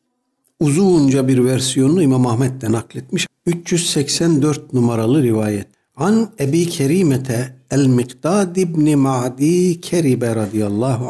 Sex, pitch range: male, 120-170 Hz